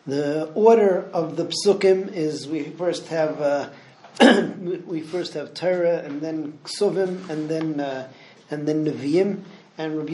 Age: 40-59